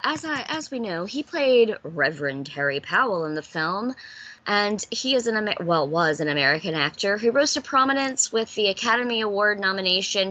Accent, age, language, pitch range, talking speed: American, 20-39, English, 155-235 Hz, 175 wpm